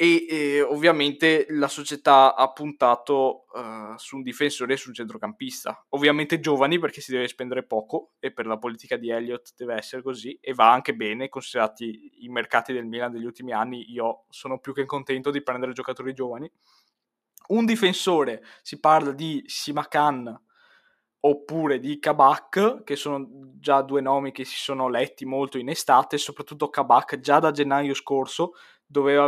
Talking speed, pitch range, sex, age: 165 wpm, 125-150 Hz, male, 20-39